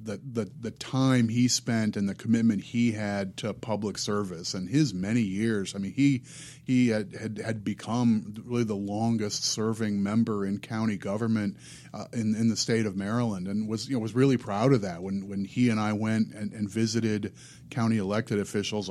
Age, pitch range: 30-49, 105-120 Hz